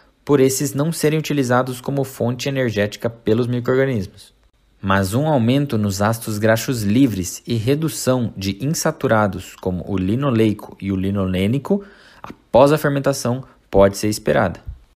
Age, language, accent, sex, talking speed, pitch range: 20-39, Portuguese, Brazilian, male, 130 wpm, 115-145 Hz